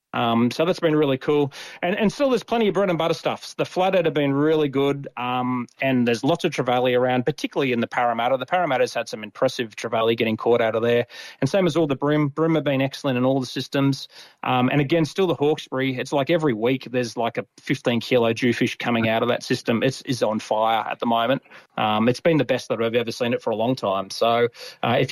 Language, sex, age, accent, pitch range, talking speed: English, male, 30-49, Australian, 120-165 Hz, 245 wpm